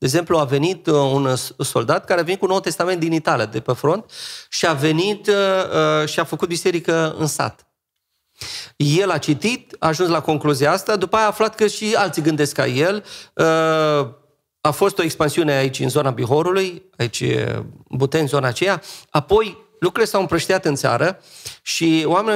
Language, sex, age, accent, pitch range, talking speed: Romanian, male, 30-49, native, 140-180 Hz, 180 wpm